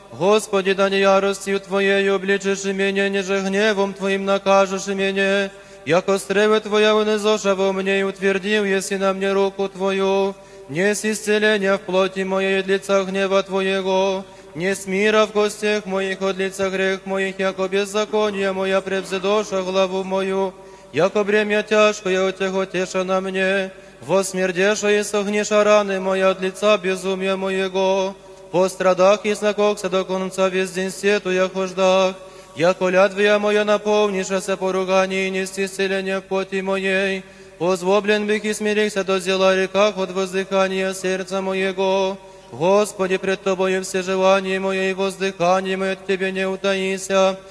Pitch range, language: 190-195 Hz, Polish